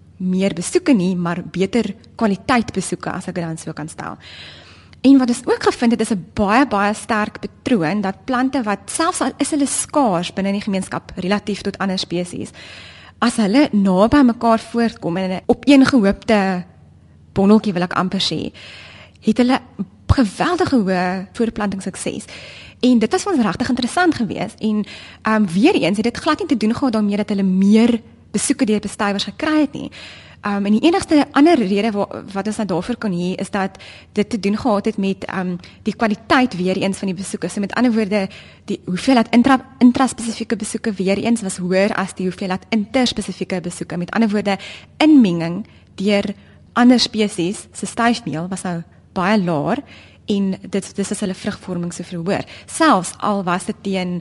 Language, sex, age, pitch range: Japanese, female, 20-39, 185-235 Hz